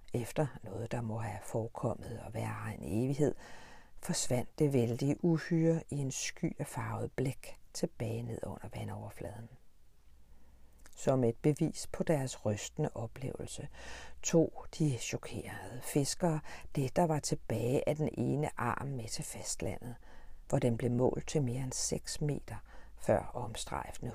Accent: native